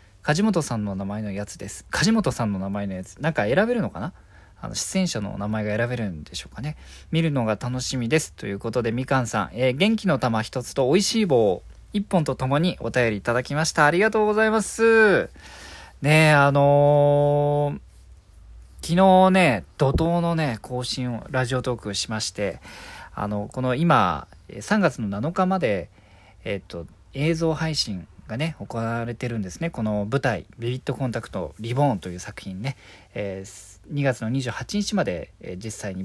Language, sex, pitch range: Japanese, male, 100-155 Hz